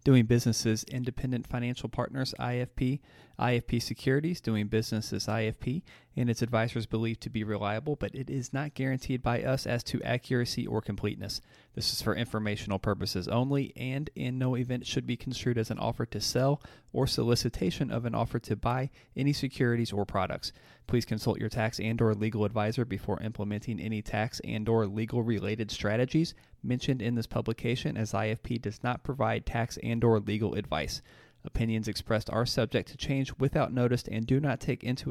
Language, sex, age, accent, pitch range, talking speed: English, male, 30-49, American, 110-130 Hz, 175 wpm